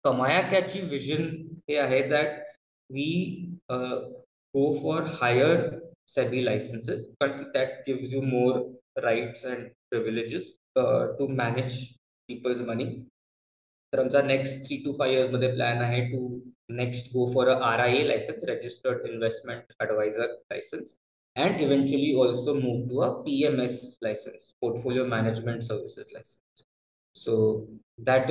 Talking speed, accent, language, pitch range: 120 wpm, native, Marathi, 125-150 Hz